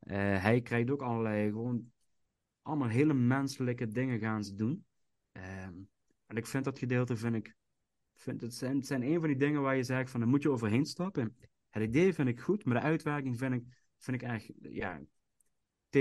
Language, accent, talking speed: Dutch, Dutch, 190 wpm